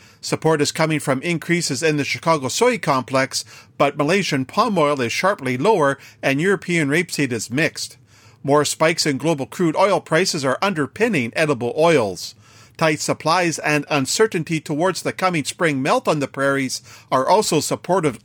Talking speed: 160 wpm